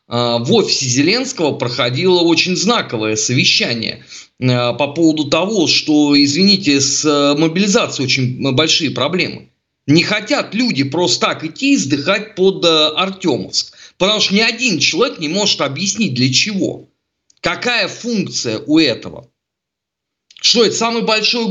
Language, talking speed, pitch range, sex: Russian, 125 wpm, 140-205 Hz, male